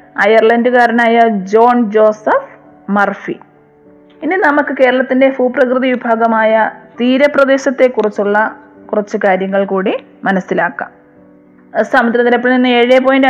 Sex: female